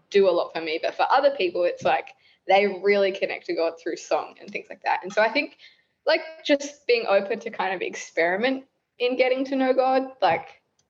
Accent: Australian